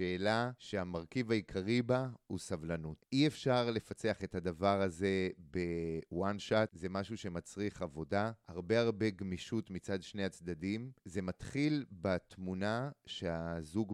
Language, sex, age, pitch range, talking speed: Hebrew, male, 30-49, 95-135 Hz, 120 wpm